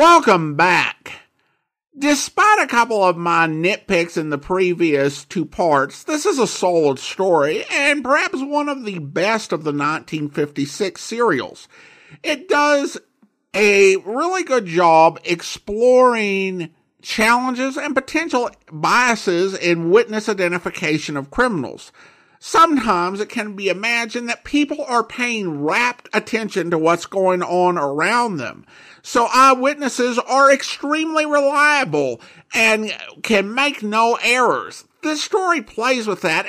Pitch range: 175-275 Hz